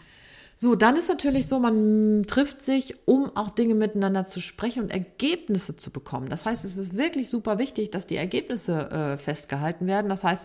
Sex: female